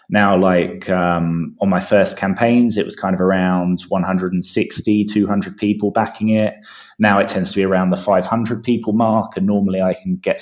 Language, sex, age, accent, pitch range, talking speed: English, male, 20-39, British, 90-105 Hz, 185 wpm